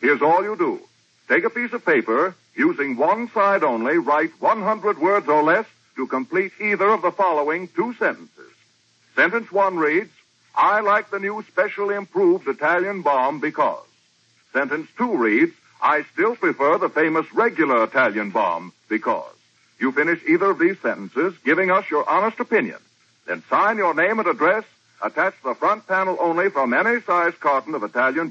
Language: English